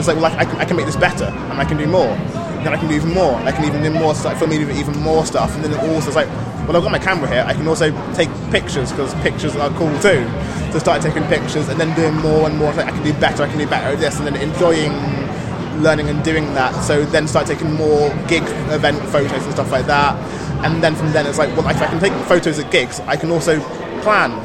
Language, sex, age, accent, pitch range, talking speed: English, male, 20-39, British, 145-165 Hz, 280 wpm